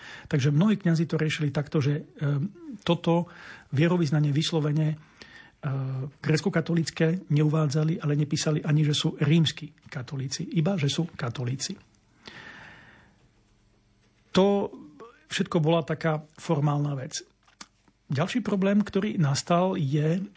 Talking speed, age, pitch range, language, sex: 105 wpm, 40-59, 150-165 Hz, Slovak, male